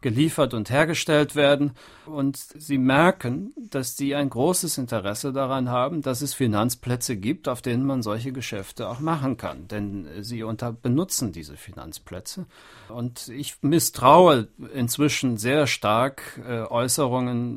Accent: German